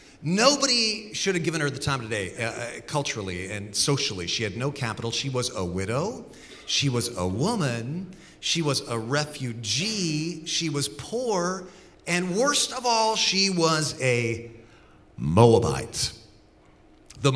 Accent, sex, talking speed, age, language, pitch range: American, male, 140 wpm, 40-59, English, 115-175 Hz